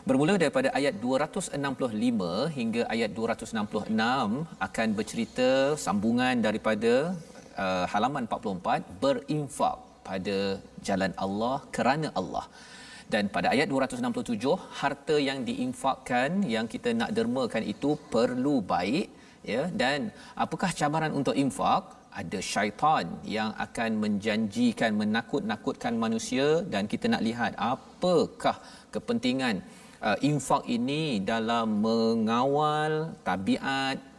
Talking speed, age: 100 wpm, 40-59